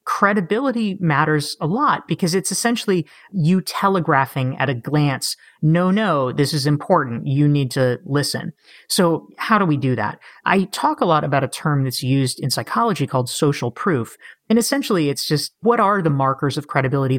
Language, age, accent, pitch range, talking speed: English, 30-49, American, 140-185 Hz, 180 wpm